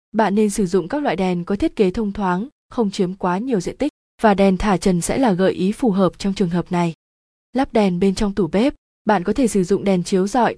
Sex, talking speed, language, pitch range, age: female, 260 wpm, Vietnamese, 190-230 Hz, 20-39